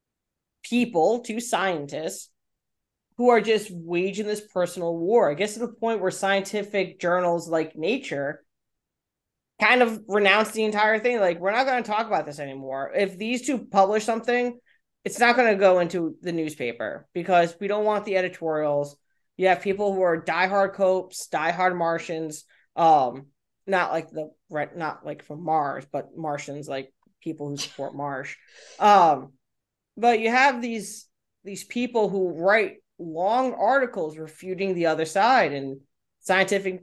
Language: English